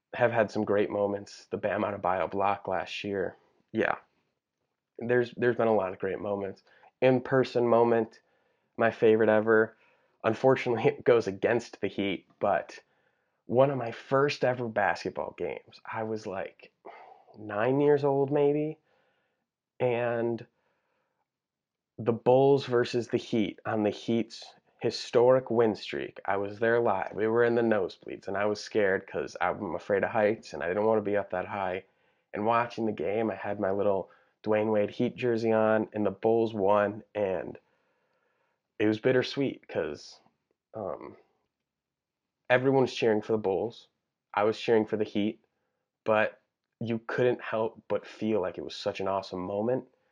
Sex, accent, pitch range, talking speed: male, American, 105-125 Hz, 160 wpm